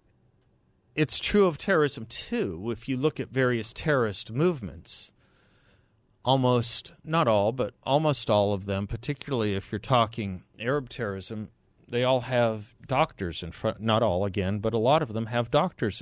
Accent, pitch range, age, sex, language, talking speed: American, 100-130 Hz, 40-59, male, English, 155 wpm